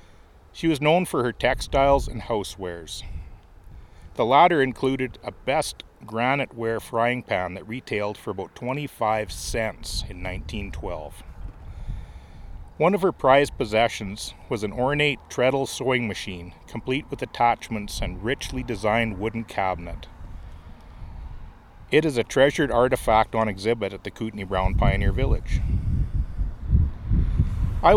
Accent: American